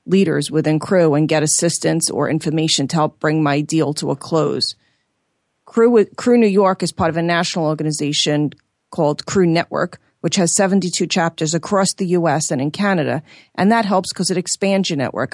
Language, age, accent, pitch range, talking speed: English, 40-59, American, 155-180 Hz, 190 wpm